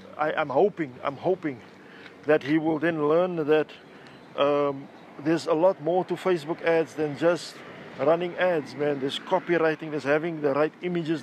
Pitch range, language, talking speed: 150-175 Hz, English, 165 wpm